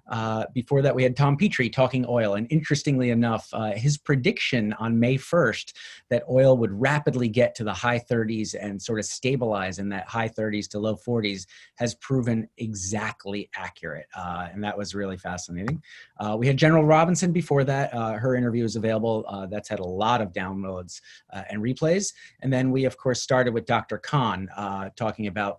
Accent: American